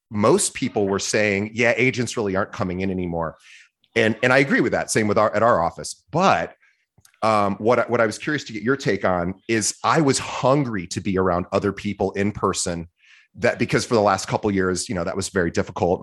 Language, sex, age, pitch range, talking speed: English, male, 30-49, 90-110 Hz, 225 wpm